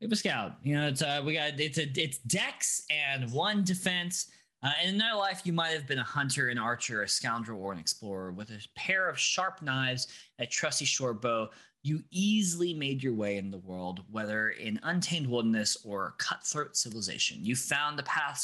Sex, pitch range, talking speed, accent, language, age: male, 115-160 Hz, 200 wpm, American, English, 20-39